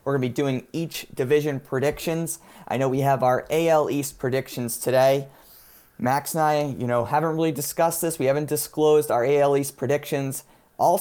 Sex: male